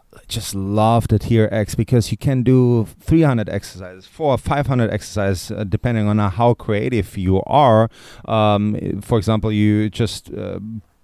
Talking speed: 145 wpm